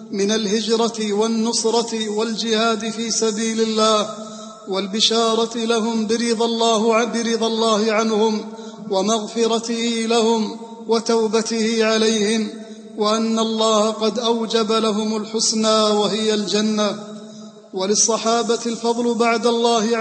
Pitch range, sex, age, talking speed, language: 220-230 Hz, male, 30-49, 85 wpm, English